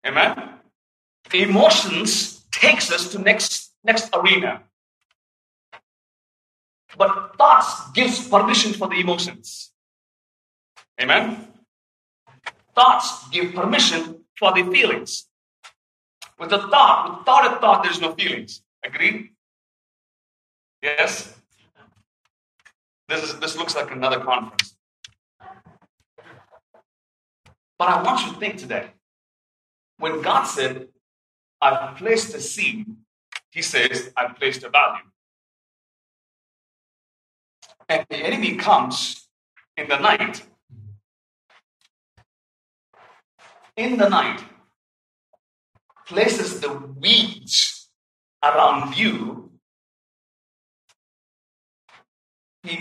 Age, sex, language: 40-59, male, English